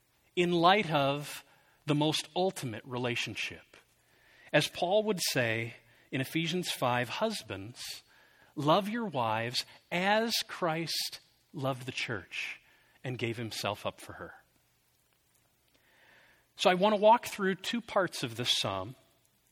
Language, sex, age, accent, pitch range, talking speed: English, male, 40-59, American, 125-185 Hz, 125 wpm